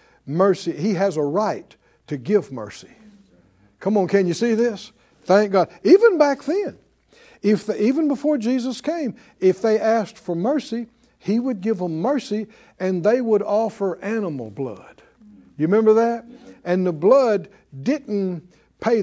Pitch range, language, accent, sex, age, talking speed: 155-215 Hz, English, American, male, 60-79, 155 wpm